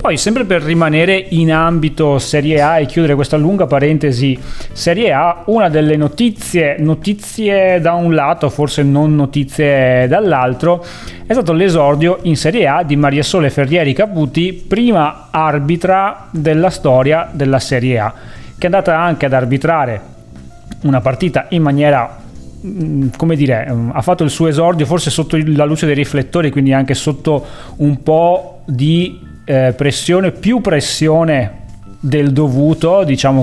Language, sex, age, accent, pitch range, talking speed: Italian, male, 30-49, native, 130-165 Hz, 140 wpm